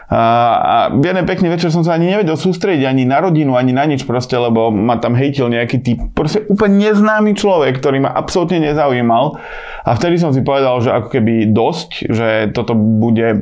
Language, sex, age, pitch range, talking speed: Slovak, male, 20-39, 115-140 Hz, 190 wpm